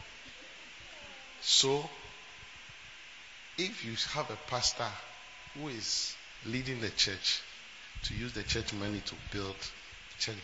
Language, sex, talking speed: English, male, 110 wpm